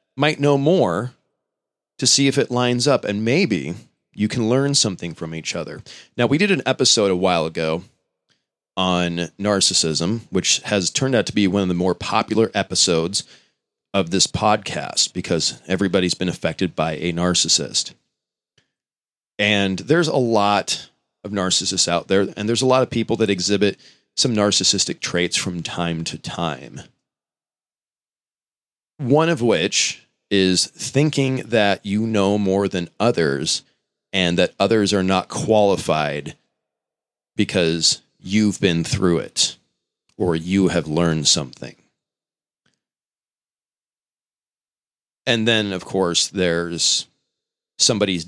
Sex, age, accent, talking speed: male, 30-49, American, 130 wpm